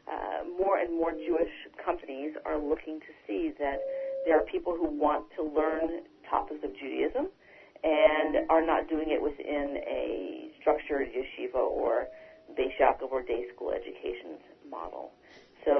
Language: English